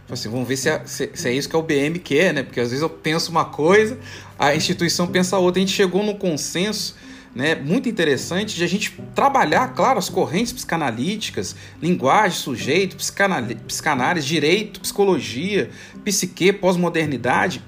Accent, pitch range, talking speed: Brazilian, 140-210 Hz, 165 wpm